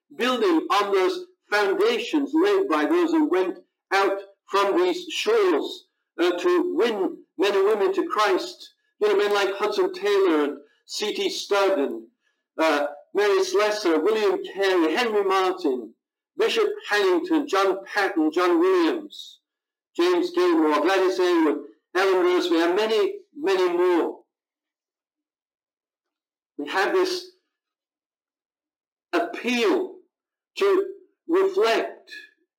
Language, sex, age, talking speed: English, male, 60-79, 110 wpm